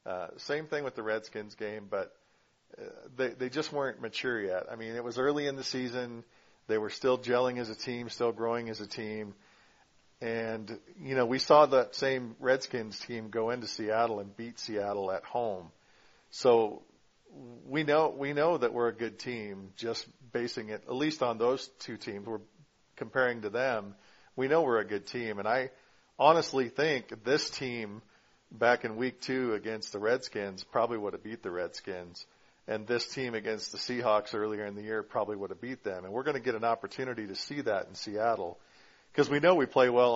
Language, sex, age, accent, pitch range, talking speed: English, male, 50-69, American, 110-130 Hz, 200 wpm